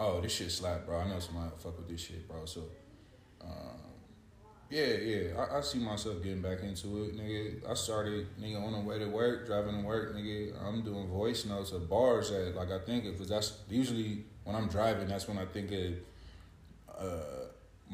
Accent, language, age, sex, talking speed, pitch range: American, English, 20-39, male, 200 wpm, 90-110 Hz